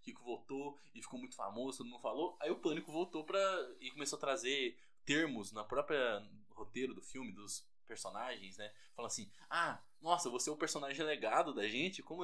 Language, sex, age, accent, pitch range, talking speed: Portuguese, male, 20-39, Brazilian, 120-190 Hz, 185 wpm